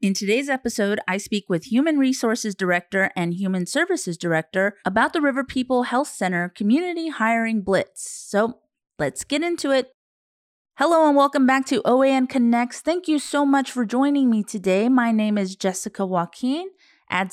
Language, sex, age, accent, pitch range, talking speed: English, female, 30-49, American, 195-270 Hz, 165 wpm